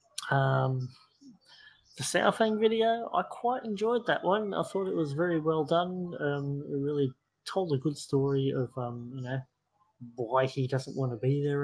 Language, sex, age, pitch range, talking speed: English, male, 20-39, 120-140 Hz, 175 wpm